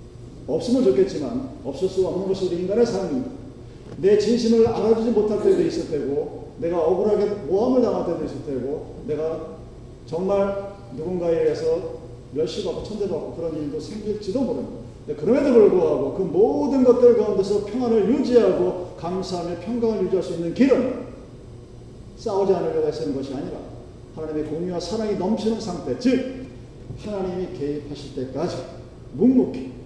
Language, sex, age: Korean, male, 40-59